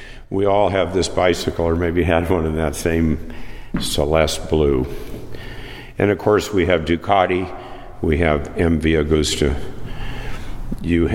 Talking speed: 135 wpm